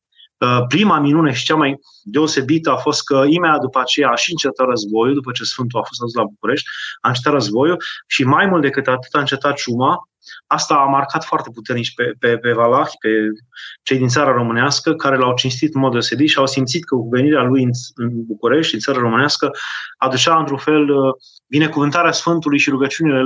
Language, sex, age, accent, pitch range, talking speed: Romanian, male, 20-39, native, 125-155 Hz, 190 wpm